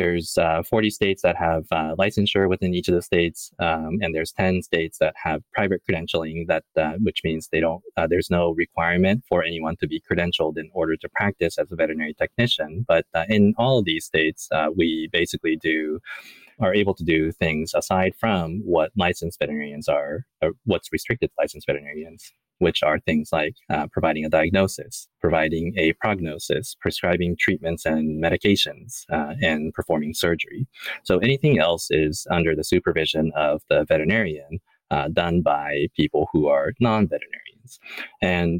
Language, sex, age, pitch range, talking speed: English, male, 20-39, 80-95 Hz, 175 wpm